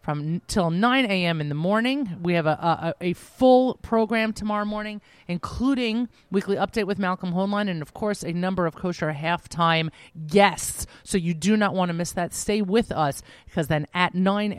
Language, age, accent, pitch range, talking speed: English, 30-49, American, 165-210 Hz, 190 wpm